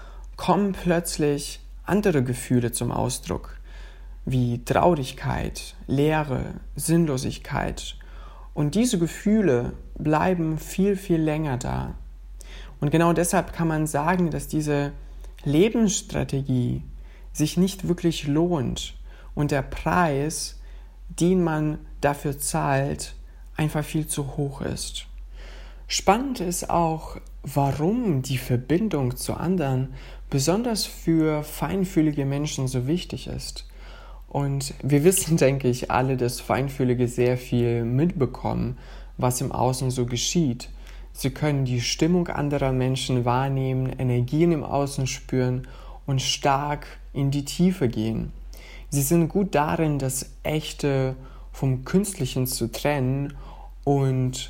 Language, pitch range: German, 125-160 Hz